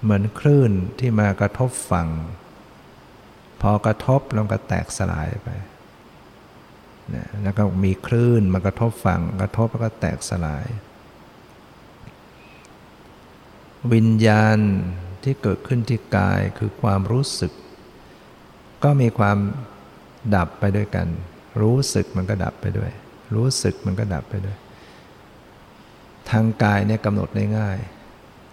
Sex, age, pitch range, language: male, 60-79, 95-115 Hz, English